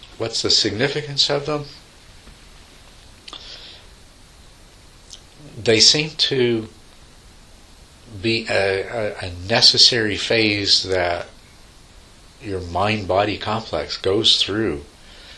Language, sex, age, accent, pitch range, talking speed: English, male, 60-79, American, 85-110 Hz, 80 wpm